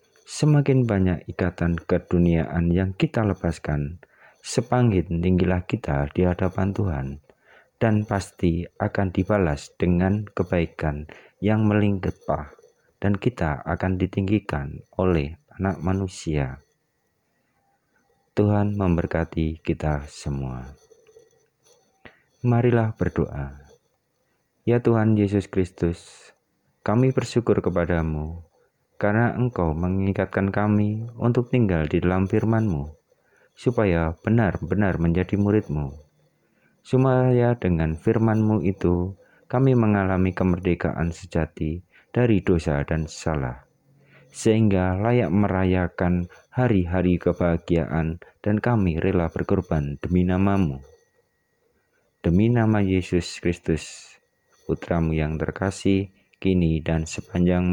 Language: Indonesian